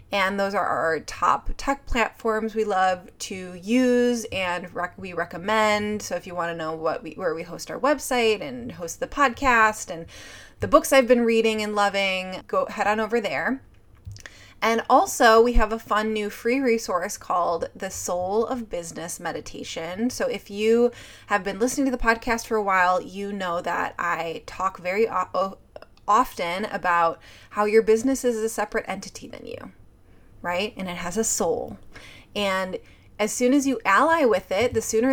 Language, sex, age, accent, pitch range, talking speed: English, female, 20-39, American, 180-230 Hz, 180 wpm